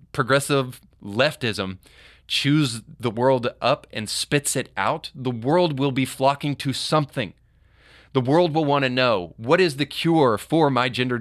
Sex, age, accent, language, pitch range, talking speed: male, 30-49, American, English, 120-145 Hz, 155 wpm